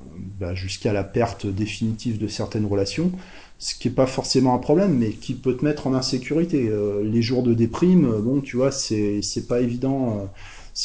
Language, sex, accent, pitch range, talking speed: French, male, French, 105-130 Hz, 190 wpm